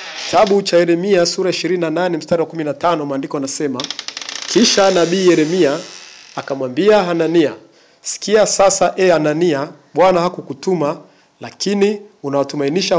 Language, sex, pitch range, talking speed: Swahili, male, 150-180 Hz, 105 wpm